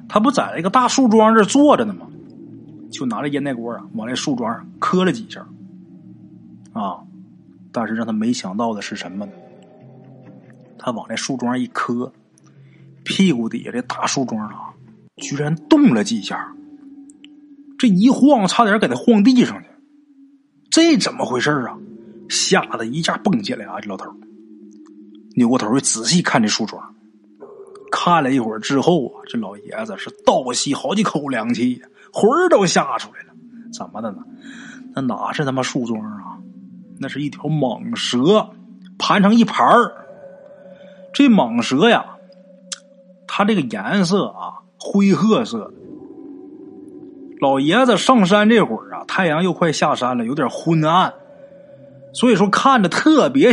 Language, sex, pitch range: Chinese, male, 155-260 Hz